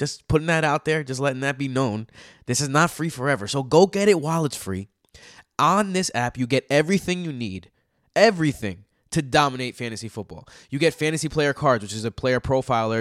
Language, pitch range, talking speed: English, 115-160 Hz, 210 wpm